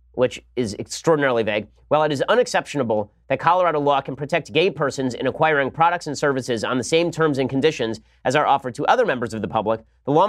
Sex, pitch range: male, 125-160 Hz